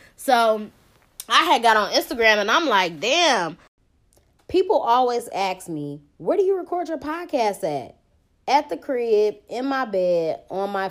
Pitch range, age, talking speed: 175-230 Hz, 20-39, 160 wpm